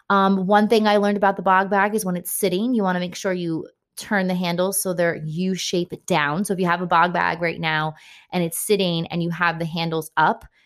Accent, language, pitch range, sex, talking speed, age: American, English, 165-200 Hz, female, 260 wpm, 20-39